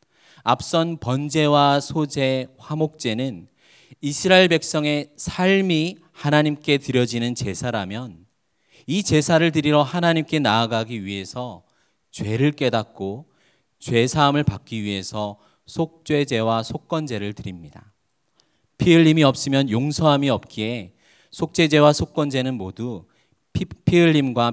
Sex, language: male, Korean